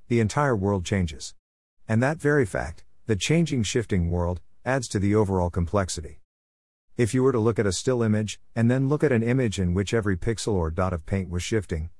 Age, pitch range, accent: 50-69, 90-120 Hz, American